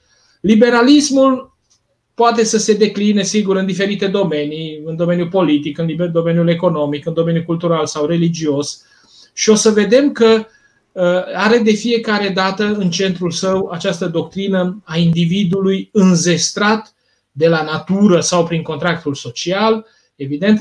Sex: male